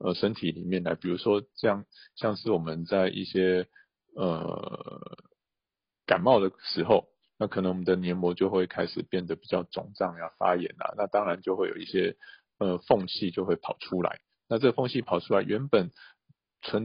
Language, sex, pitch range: Chinese, male, 90-100 Hz